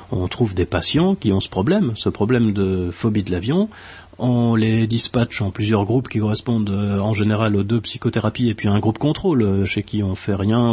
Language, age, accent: French, 40-59, French